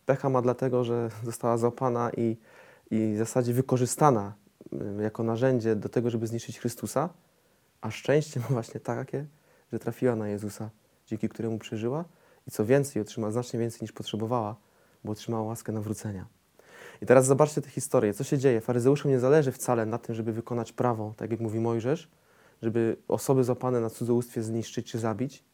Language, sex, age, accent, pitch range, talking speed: Polish, male, 20-39, native, 110-130 Hz, 165 wpm